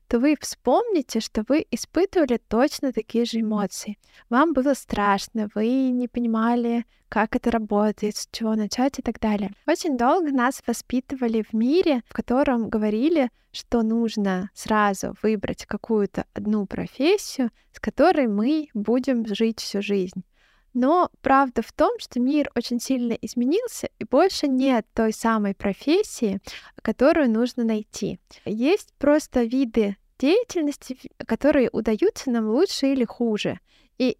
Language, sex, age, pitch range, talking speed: Russian, female, 20-39, 215-275 Hz, 135 wpm